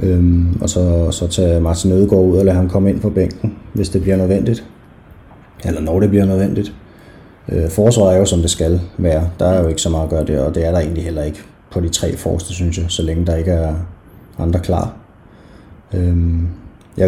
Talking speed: 220 wpm